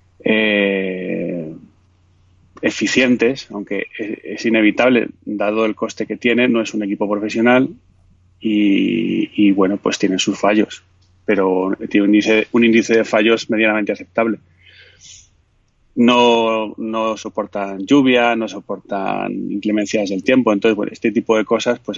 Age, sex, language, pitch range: 30-49, male, Spanish, 100-115 Hz